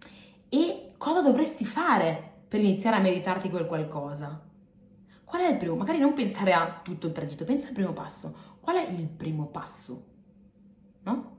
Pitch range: 160-235 Hz